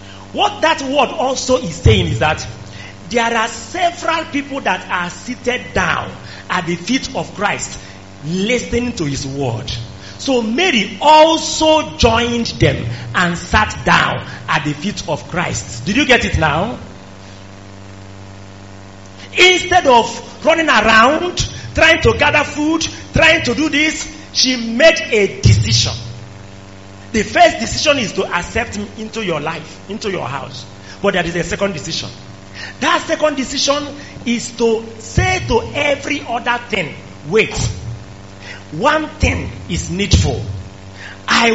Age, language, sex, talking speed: 40-59, English, male, 135 wpm